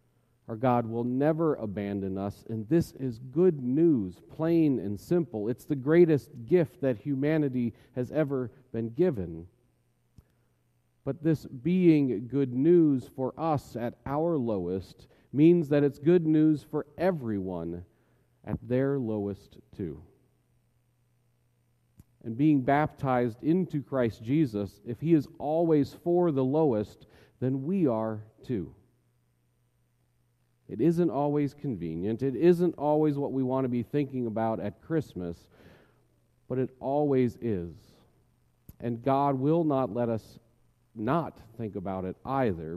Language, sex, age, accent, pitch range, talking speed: English, male, 40-59, American, 110-145 Hz, 130 wpm